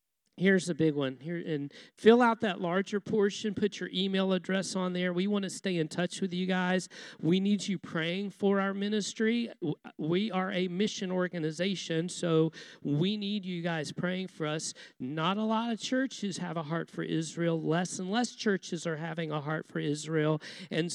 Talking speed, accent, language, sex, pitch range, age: 190 wpm, American, Polish, male, 160-200 Hz, 50-69